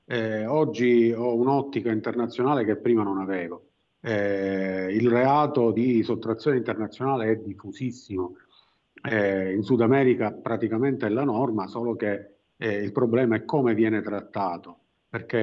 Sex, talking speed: male, 135 wpm